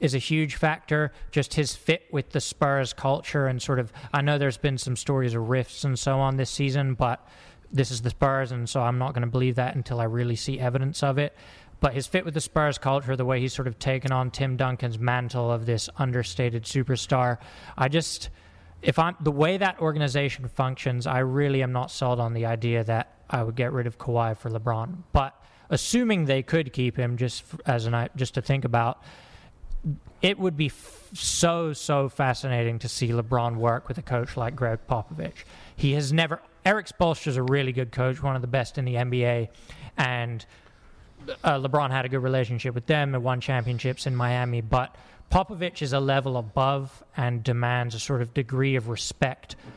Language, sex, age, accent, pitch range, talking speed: English, male, 20-39, American, 120-140 Hz, 205 wpm